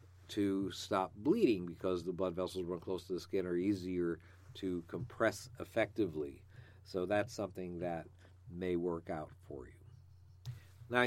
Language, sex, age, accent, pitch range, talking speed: English, male, 50-69, American, 90-105 Hz, 145 wpm